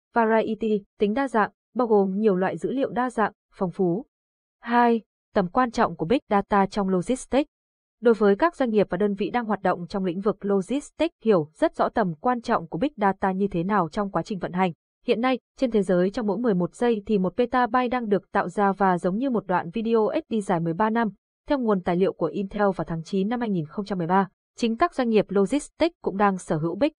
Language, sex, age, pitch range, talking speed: Vietnamese, female, 20-39, 195-235 Hz, 230 wpm